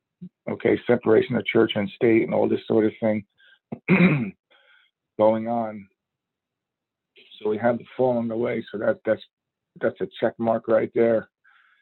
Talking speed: 155 wpm